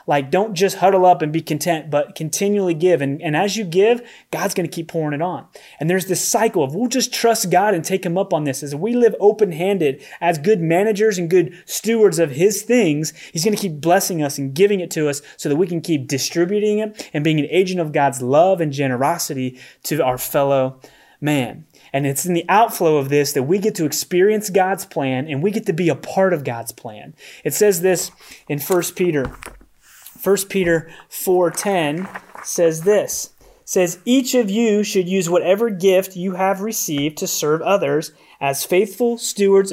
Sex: male